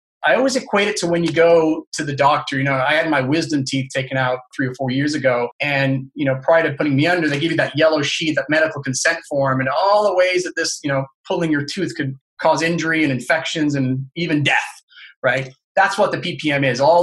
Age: 30-49